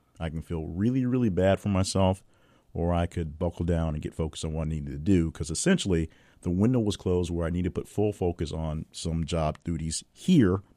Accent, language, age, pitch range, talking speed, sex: American, English, 50-69, 80-100 Hz, 225 wpm, male